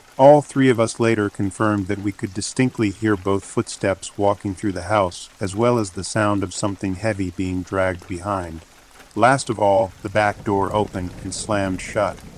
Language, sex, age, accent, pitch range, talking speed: English, male, 40-59, American, 95-110 Hz, 185 wpm